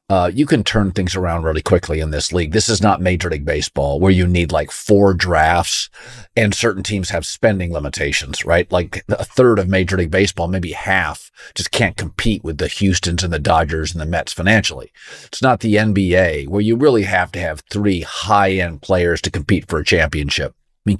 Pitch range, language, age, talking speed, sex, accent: 90-105 Hz, English, 50-69, 205 wpm, male, American